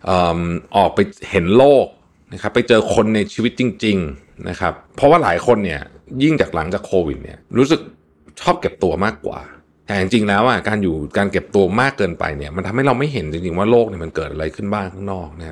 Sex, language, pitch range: male, Thai, 80-105 Hz